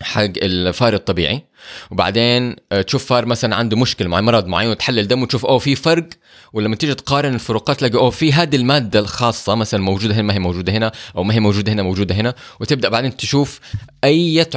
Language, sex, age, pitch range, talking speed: Arabic, male, 20-39, 100-130 Hz, 190 wpm